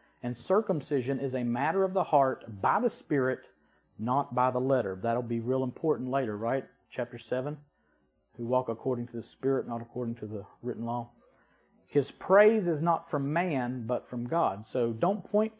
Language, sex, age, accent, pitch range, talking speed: English, male, 40-59, American, 125-175 Hz, 180 wpm